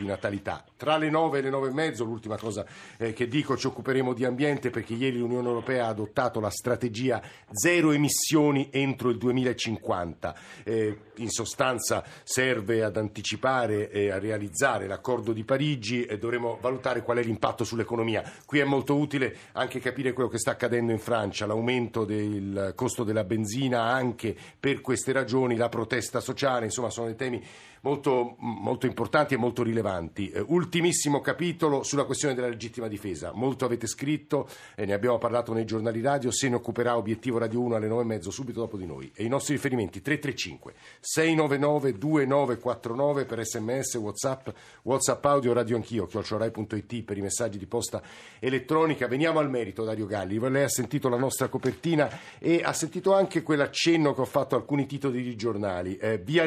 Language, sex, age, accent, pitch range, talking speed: Italian, male, 50-69, native, 110-140 Hz, 170 wpm